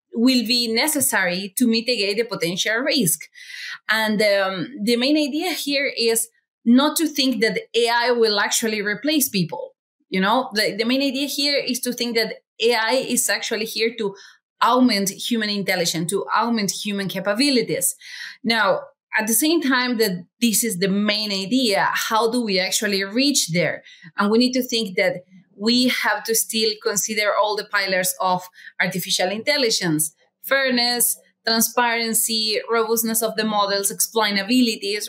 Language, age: English, 30-49